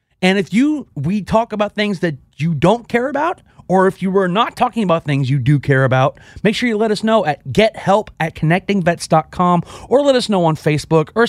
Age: 40-59